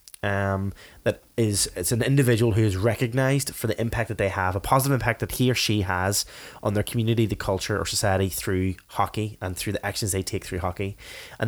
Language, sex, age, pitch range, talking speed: English, male, 20-39, 100-125 Hz, 215 wpm